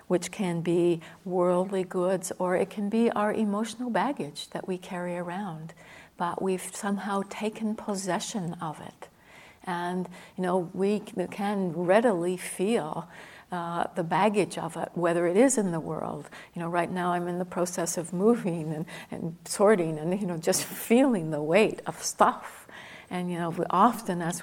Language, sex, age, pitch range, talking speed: English, female, 60-79, 175-220 Hz, 170 wpm